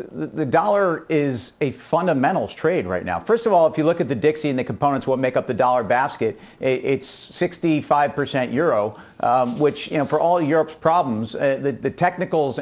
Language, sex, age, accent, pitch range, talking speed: English, male, 40-59, American, 140-165 Hz, 195 wpm